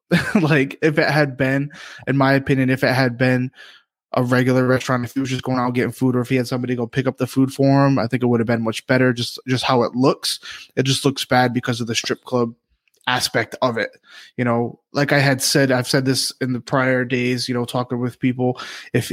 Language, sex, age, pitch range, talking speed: English, male, 20-39, 125-140 Hz, 250 wpm